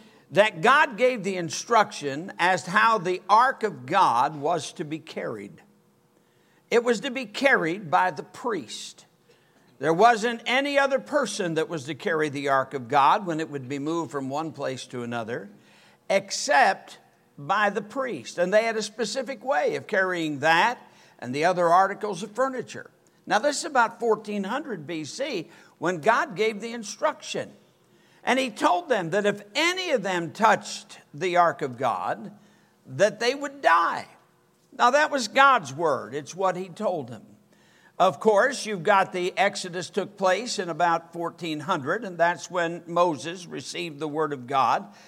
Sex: male